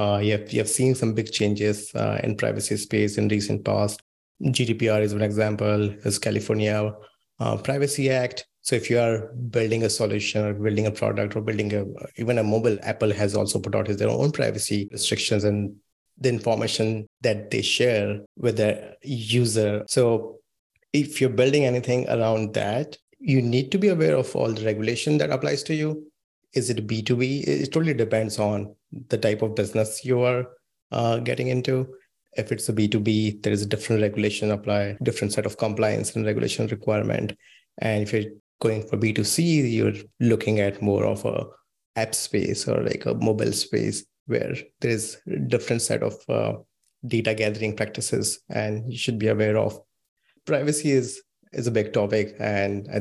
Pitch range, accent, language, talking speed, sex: 105-125 Hz, Indian, English, 175 wpm, male